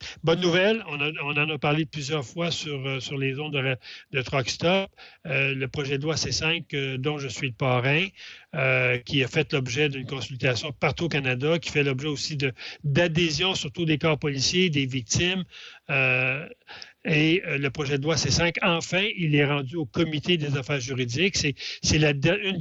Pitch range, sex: 140-165 Hz, male